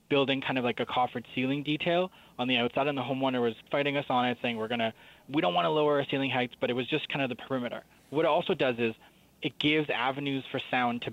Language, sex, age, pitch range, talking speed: English, male, 20-39, 120-145 Hz, 270 wpm